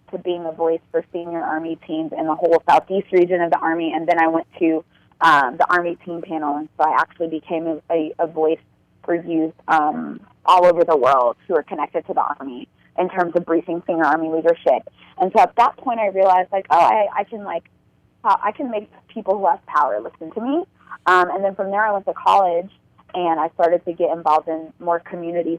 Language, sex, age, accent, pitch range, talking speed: English, female, 20-39, American, 165-200 Hz, 225 wpm